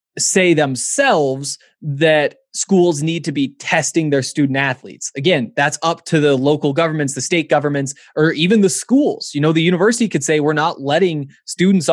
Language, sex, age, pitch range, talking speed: English, male, 20-39, 145-190 Hz, 175 wpm